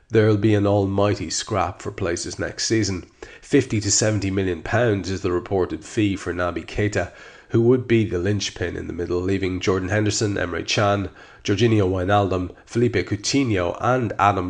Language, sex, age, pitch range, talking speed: English, male, 40-59, 95-110 Hz, 165 wpm